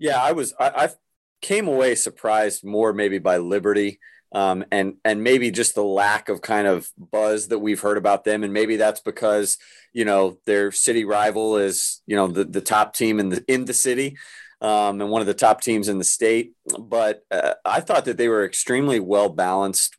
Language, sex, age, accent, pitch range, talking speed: English, male, 30-49, American, 100-115 Hz, 205 wpm